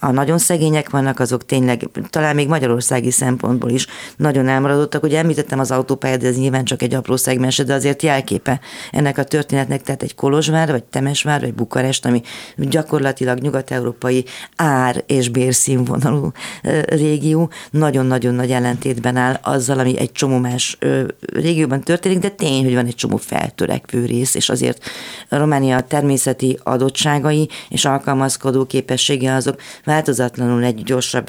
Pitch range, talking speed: 125-145 Hz, 140 wpm